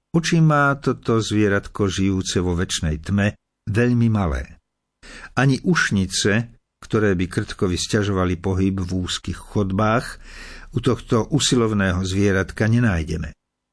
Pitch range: 100-135 Hz